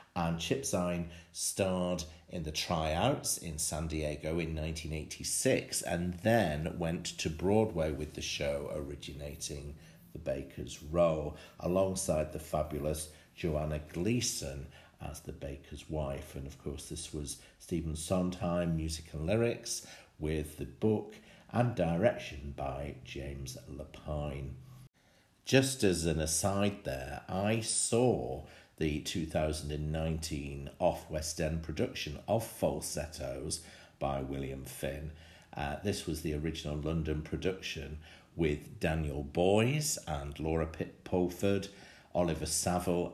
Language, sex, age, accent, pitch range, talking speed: English, male, 50-69, British, 75-90 Hz, 115 wpm